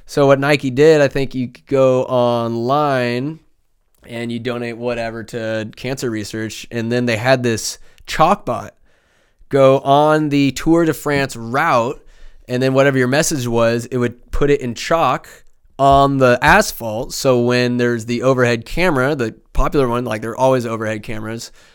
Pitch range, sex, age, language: 115-135 Hz, male, 20-39, English